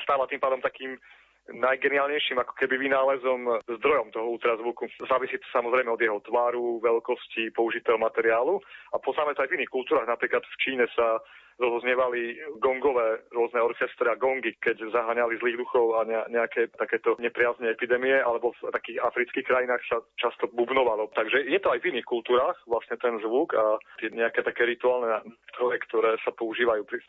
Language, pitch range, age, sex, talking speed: Slovak, 115-135 Hz, 30-49, male, 170 wpm